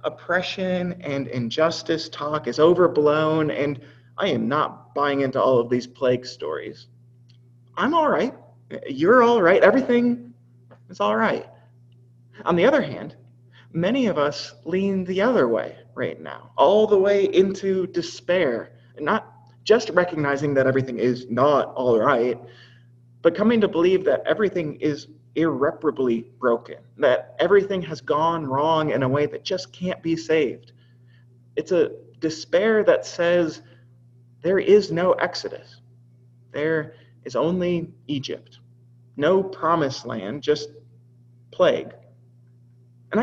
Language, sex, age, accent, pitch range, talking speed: English, male, 30-49, American, 120-180 Hz, 130 wpm